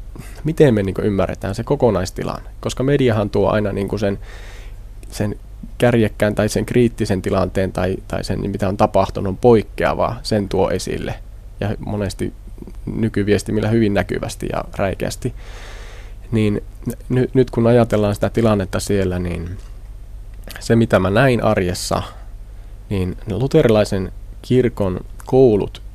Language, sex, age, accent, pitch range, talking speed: Finnish, male, 20-39, native, 100-120 Hz, 115 wpm